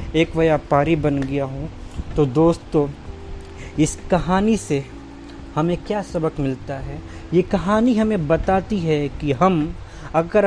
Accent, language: native, Hindi